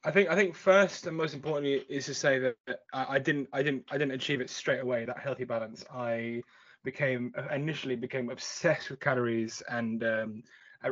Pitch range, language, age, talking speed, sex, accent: 115-140 Hz, English, 20-39, 190 wpm, male, British